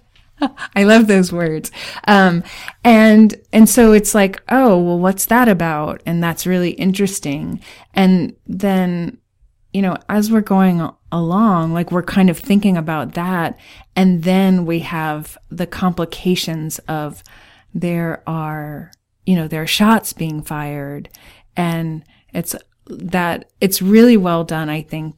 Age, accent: 30-49, American